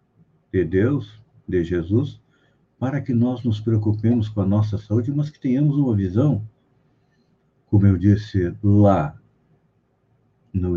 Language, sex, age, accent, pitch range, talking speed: Portuguese, male, 60-79, Brazilian, 105-140 Hz, 130 wpm